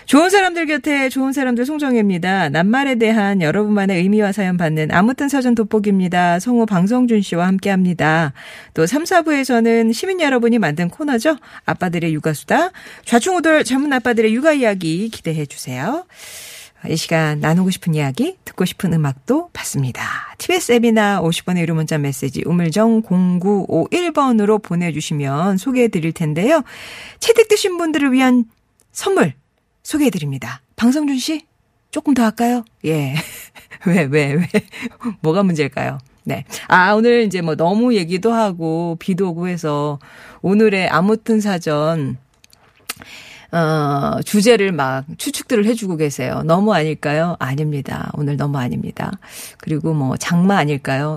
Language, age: Korean, 40-59